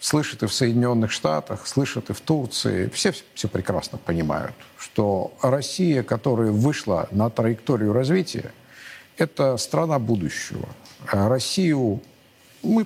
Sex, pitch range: male, 110-145 Hz